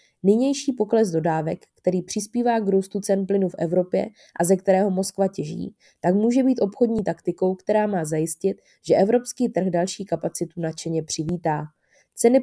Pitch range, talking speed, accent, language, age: 170-205 Hz, 155 wpm, native, Czech, 20-39